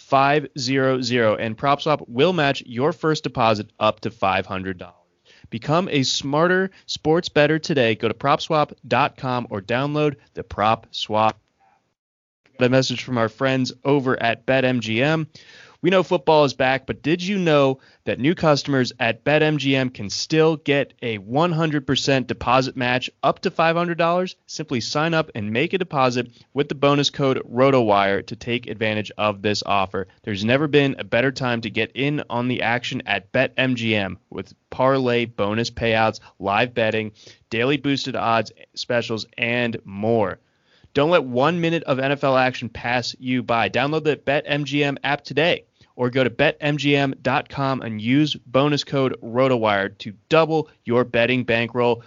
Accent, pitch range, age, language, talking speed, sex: American, 115-145 Hz, 20-39, English, 155 wpm, male